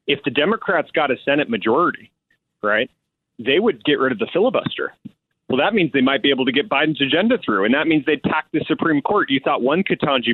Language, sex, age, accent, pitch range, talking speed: English, male, 30-49, American, 125-145 Hz, 225 wpm